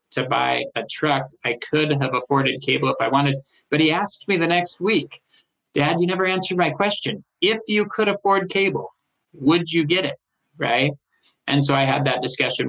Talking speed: 195 wpm